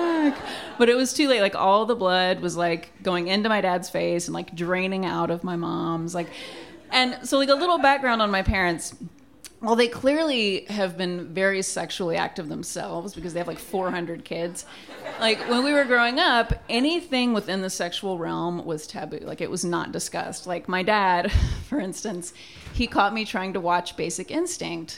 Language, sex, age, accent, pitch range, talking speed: English, female, 30-49, American, 175-235 Hz, 190 wpm